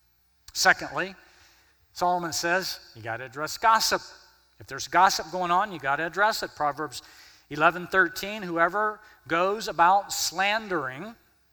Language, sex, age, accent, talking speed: English, male, 50-69, American, 130 wpm